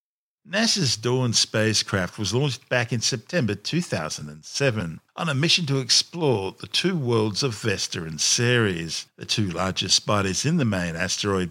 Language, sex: English, male